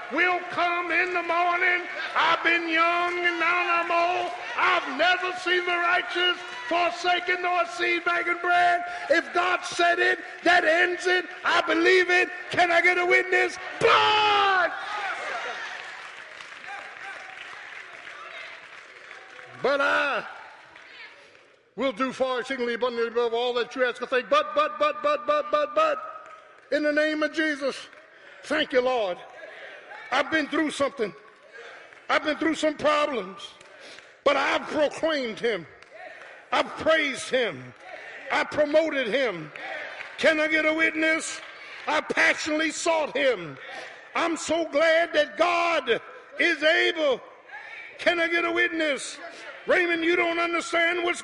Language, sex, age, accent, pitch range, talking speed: English, male, 50-69, American, 305-355 Hz, 130 wpm